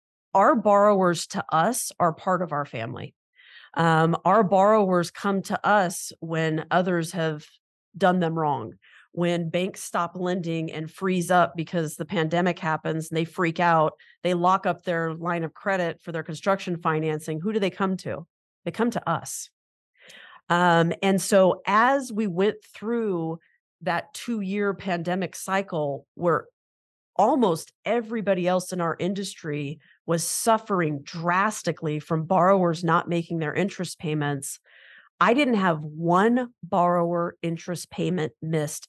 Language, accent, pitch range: English, American, 165-195 Hz